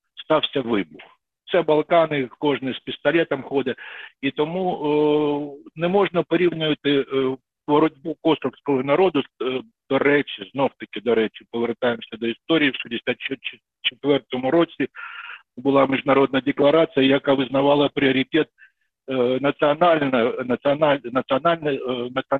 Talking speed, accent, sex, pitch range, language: 105 wpm, native, male, 130-160 Hz, Ukrainian